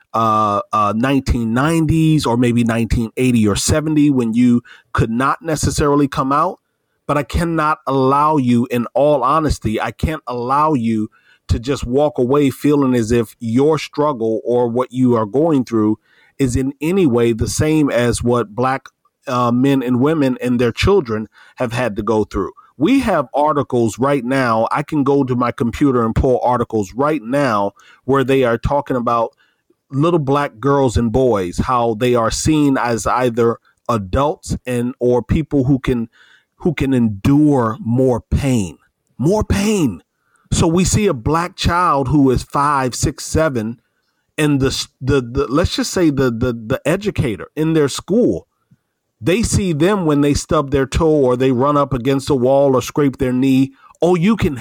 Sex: male